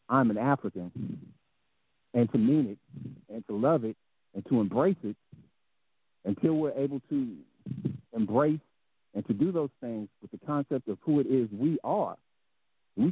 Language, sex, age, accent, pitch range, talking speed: English, male, 50-69, American, 105-145 Hz, 160 wpm